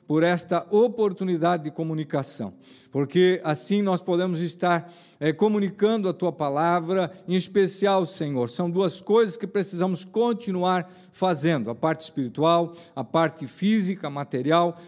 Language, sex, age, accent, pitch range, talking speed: Portuguese, male, 50-69, Brazilian, 155-190 Hz, 130 wpm